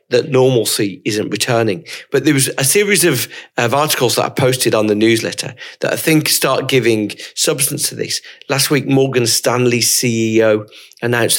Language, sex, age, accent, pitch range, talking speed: English, male, 40-59, British, 110-135 Hz, 170 wpm